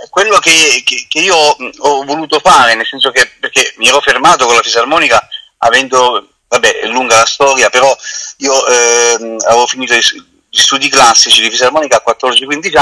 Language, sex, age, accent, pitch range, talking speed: Italian, male, 30-49, native, 125-185 Hz, 170 wpm